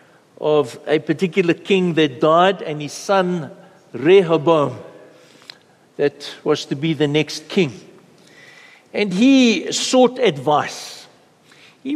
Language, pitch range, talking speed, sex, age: English, 170-225 Hz, 110 wpm, male, 60-79